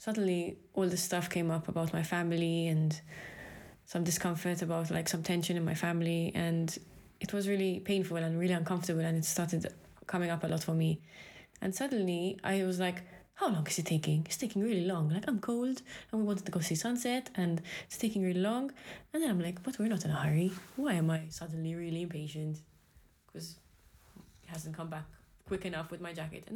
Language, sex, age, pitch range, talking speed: English, female, 20-39, 165-200 Hz, 210 wpm